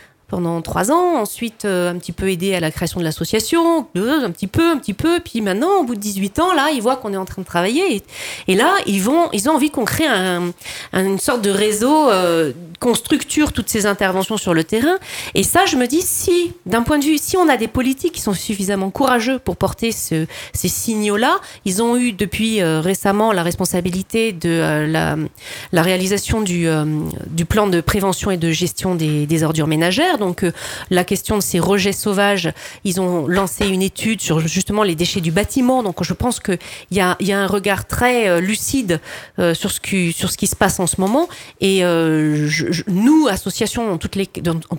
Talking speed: 220 wpm